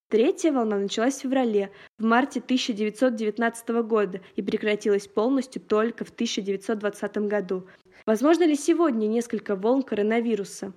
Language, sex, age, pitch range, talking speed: Russian, female, 20-39, 210-255 Hz, 125 wpm